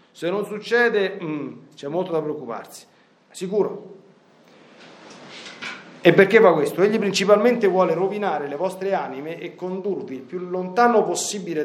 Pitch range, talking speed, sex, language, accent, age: 155-205 Hz, 135 wpm, male, Italian, native, 40-59